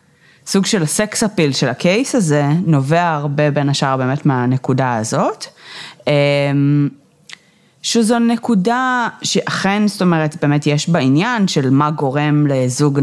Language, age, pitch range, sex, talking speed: Hebrew, 30-49, 145-195 Hz, female, 120 wpm